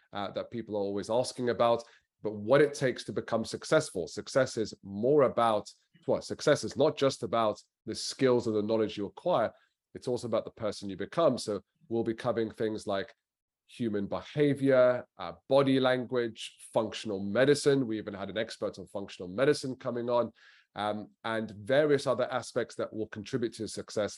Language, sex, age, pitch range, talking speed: English, male, 30-49, 105-130 Hz, 175 wpm